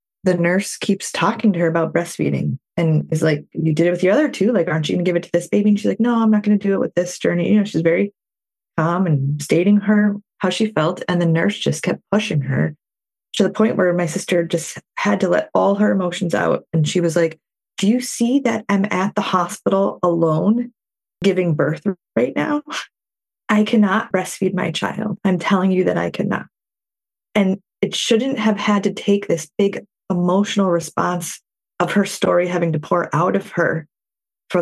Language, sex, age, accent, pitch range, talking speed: English, female, 20-39, American, 165-200 Hz, 210 wpm